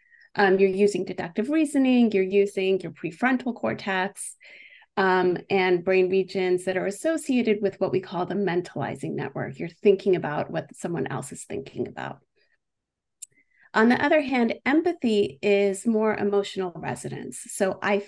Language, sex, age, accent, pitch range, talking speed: English, female, 30-49, American, 190-235 Hz, 145 wpm